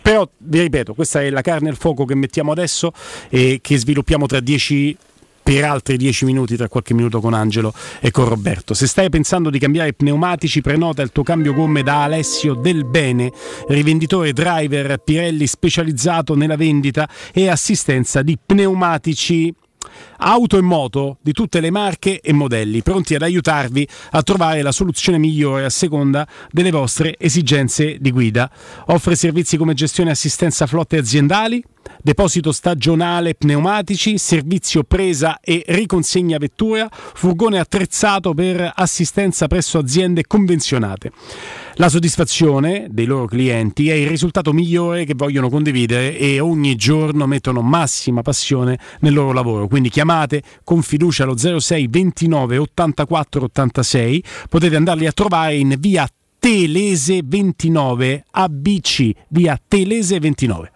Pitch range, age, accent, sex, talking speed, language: 140-175 Hz, 40-59, native, male, 140 wpm, Italian